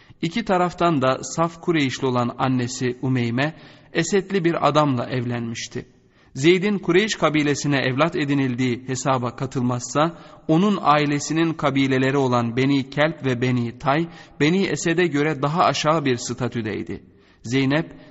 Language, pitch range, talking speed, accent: Turkish, 125-155 Hz, 120 wpm, native